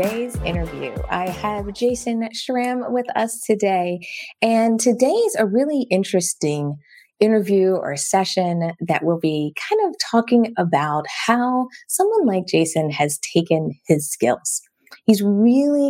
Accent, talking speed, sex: American, 130 wpm, female